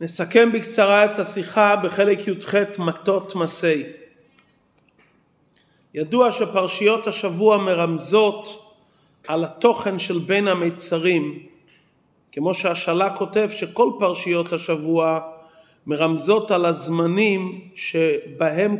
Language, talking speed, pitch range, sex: English, 85 wpm, 170-205 Hz, male